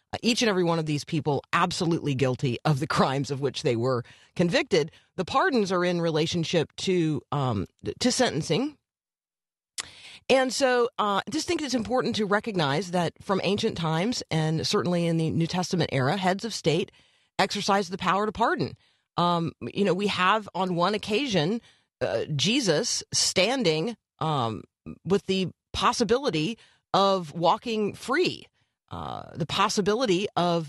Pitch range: 155-205 Hz